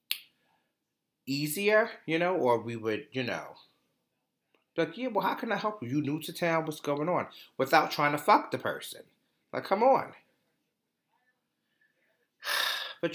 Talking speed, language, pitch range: 150 wpm, English, 110-155 Hz